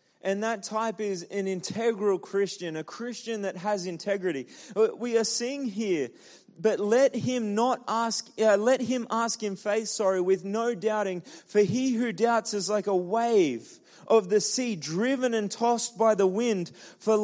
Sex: male